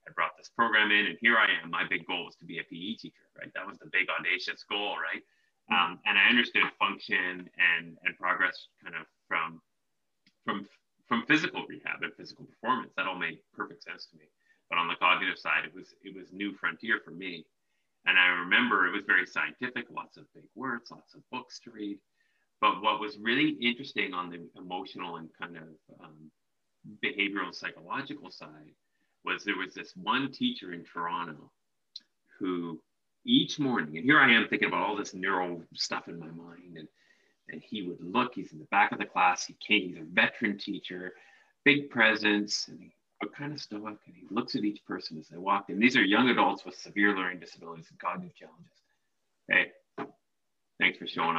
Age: 30-49